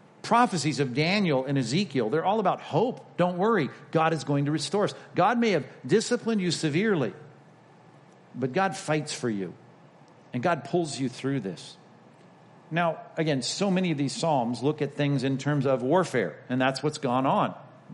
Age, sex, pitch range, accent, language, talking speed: 50-69, male, 130-165 Hz, American, English, 180 wpm